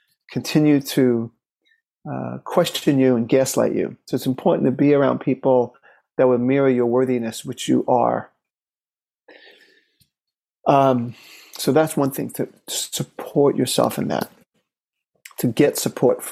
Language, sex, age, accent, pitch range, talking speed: English, male, 40-59, American, 130-155 Hz, 130 wpm